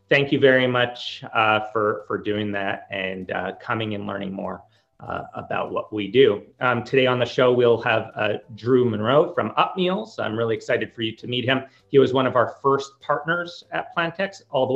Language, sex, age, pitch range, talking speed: English, male, 30-49, 115-145 Hz, 210 wpm